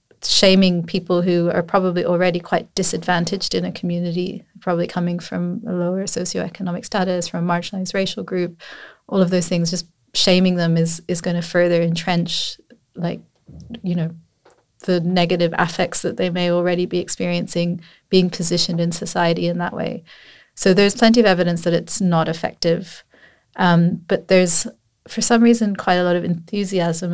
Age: 30-49